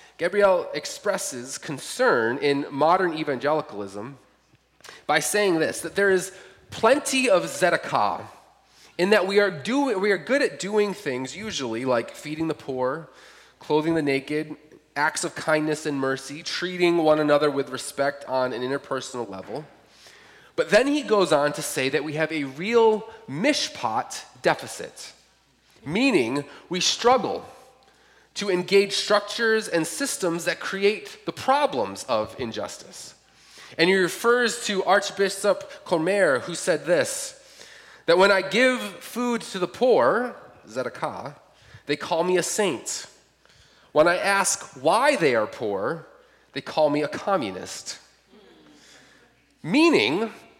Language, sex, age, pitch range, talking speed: English, male, 30-49, 150-240 Hz, 135 wpm